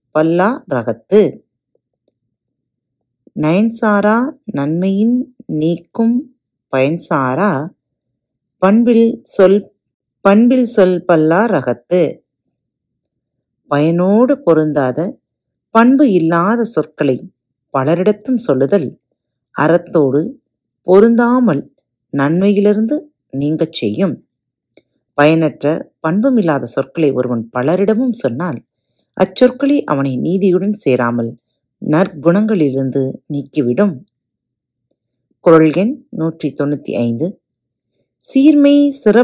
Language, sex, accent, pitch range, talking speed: Tamil, female, native, 145-225 Hz, 55 wpm